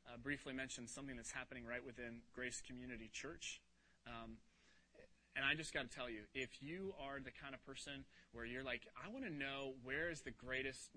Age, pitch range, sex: 30-49, 125-165 Hz, male